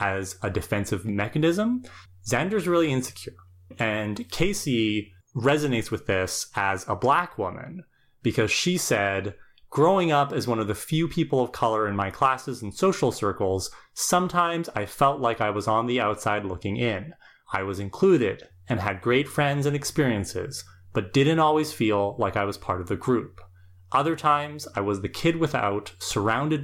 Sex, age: male, 30-49